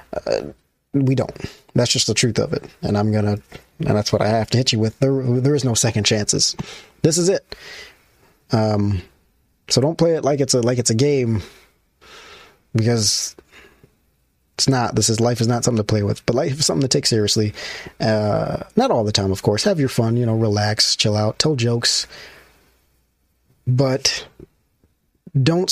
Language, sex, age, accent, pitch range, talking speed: English, male, 20-39, American, 110-145 Hz, 190 wpm